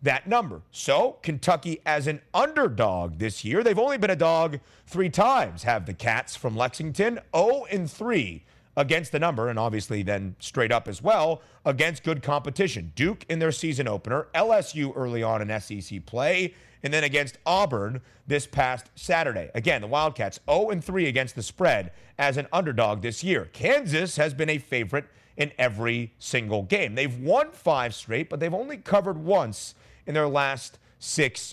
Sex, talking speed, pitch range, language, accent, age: male, 175 wpm, 125-165 Hz, English, American, 30-49